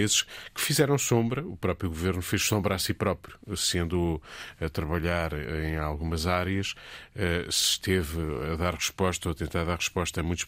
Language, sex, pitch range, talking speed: Portuguese, male, 85-110 Hz, 165 wpm